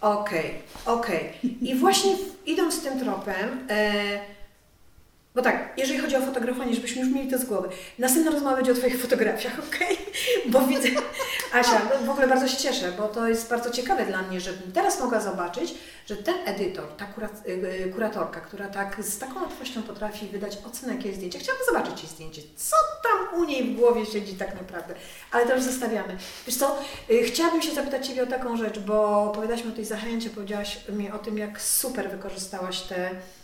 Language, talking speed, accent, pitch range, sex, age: Polish, 190 wpm, native, 200-255 Hz, female, 30-49